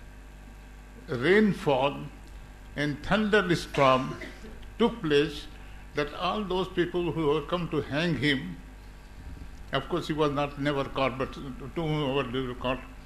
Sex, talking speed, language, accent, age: male, 130 wpm, English, Indian, 60-79